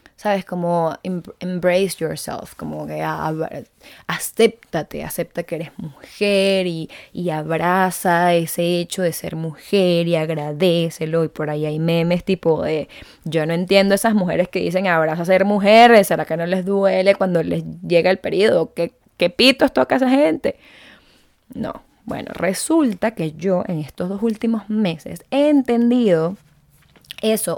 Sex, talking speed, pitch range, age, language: female, 150 wpm, 165-225 Hz, 20-39, Spanish